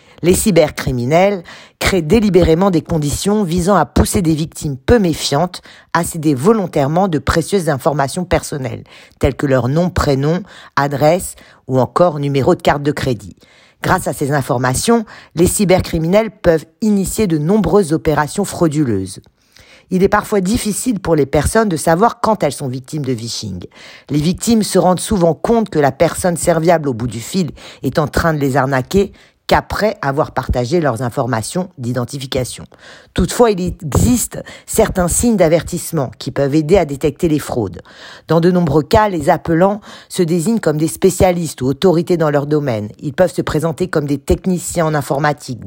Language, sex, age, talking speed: French, female, 50-69, 165 wpm